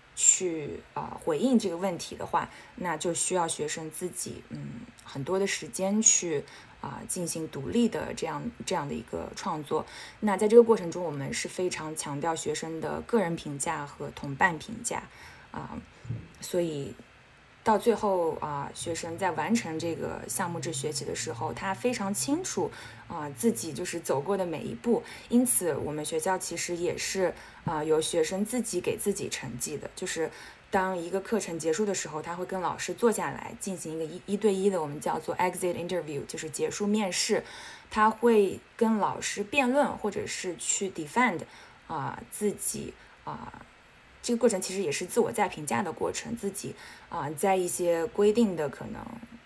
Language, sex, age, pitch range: English, female, 20-39, 165-210 Hz